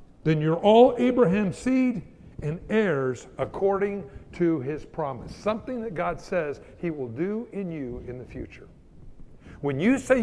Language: English